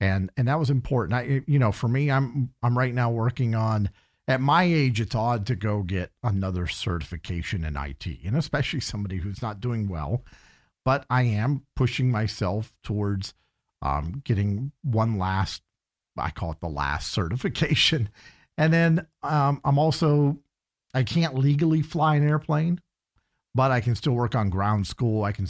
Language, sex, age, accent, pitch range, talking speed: English, male, 50-69, American, 95-135 Hz, 170 wpm